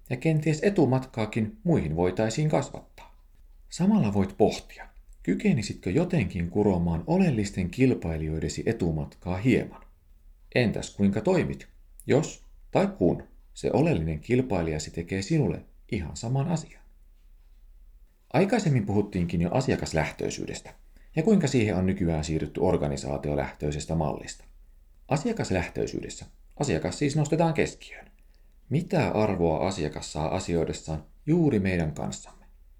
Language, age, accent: Finnish, 40-59, native